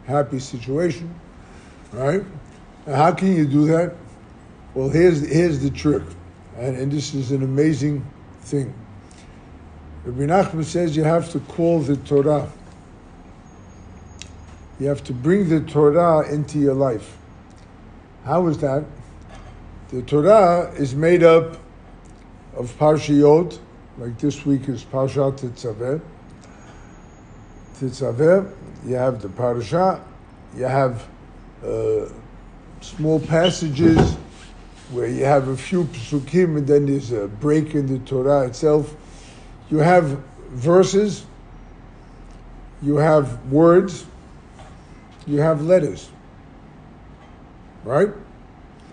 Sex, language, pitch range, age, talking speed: male, English, 120-160 Hz, 60-79, 110 wpm